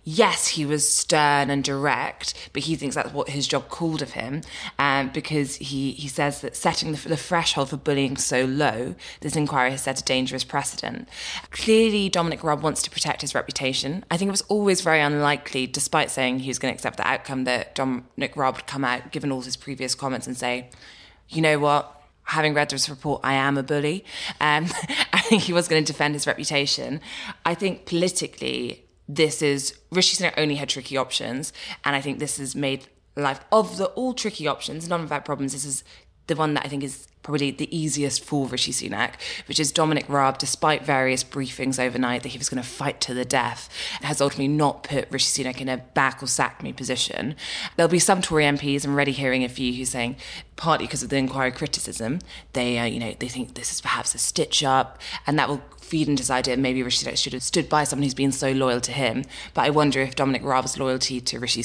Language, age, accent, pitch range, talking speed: English, 20-39, British, 130-150 Hz, 215 wpm